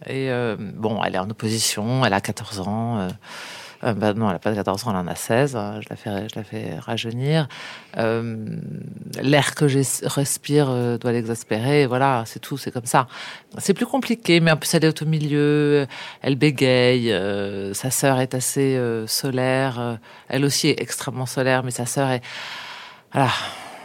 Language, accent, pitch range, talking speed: French, French, 120-150 Hz, 195 wpm